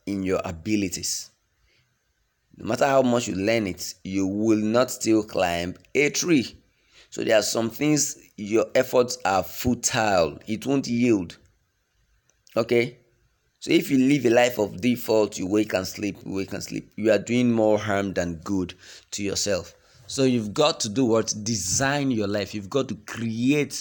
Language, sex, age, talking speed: English, male, 30-49, 165 wpm